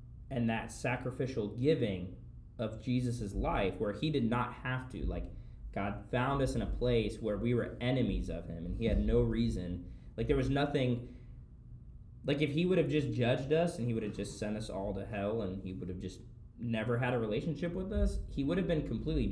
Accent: American